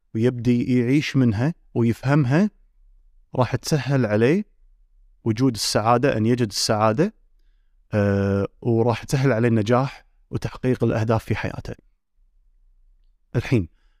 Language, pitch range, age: Arabic, 100-150 Hz, 30-49